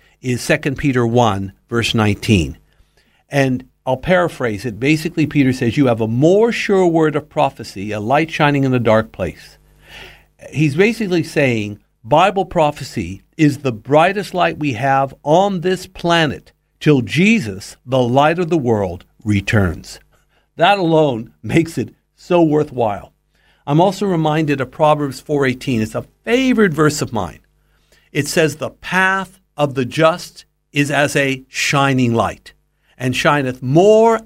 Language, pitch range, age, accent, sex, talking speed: English, 125-170 Hz, 60-79, American, male, 145 wpm